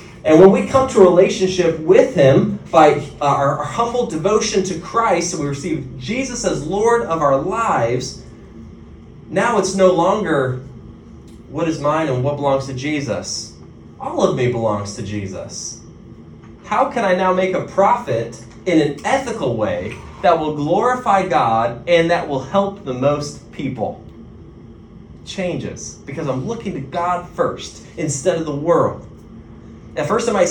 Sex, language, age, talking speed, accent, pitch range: male, English, 30-49, 155 wpm, American, 130-200 Hz